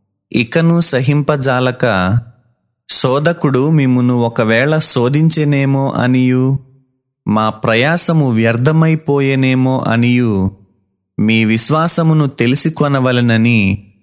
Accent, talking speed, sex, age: native, 65 wpm, male, 30-49